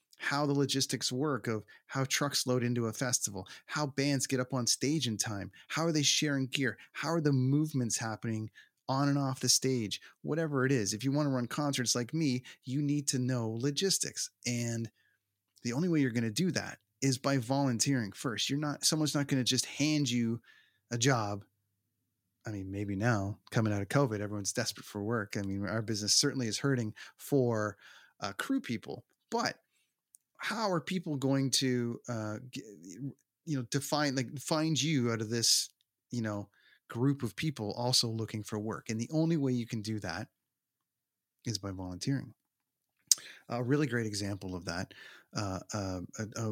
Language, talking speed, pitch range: English, 185 wpm, 110-140 Hz